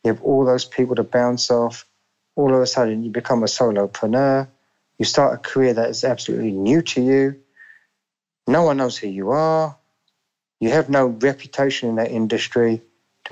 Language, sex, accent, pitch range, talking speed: English, male, British, 115-145 Hz, 180 wpm